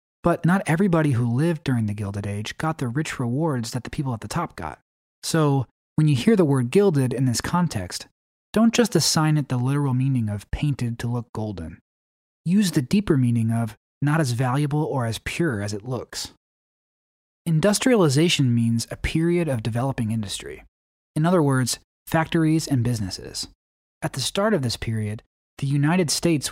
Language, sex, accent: English, male, American